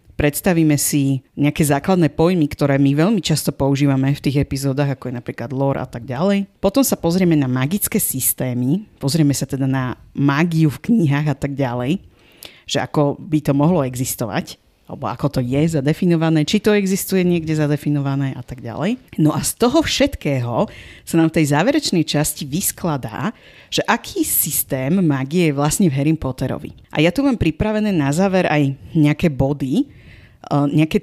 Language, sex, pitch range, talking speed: Slovak, female, 140-175 Hz, 170 wpm